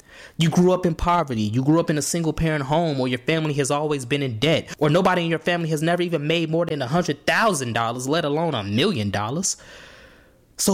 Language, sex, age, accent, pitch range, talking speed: English, male, 20-39, American, 130-185 Hz, 235 wpm